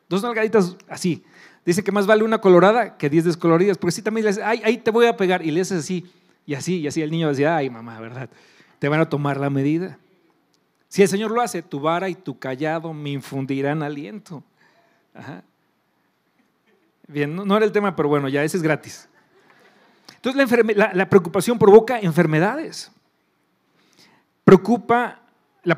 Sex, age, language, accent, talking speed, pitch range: male, 40-59, Spanish, Mexican, 185 wpm, 160-220 Hz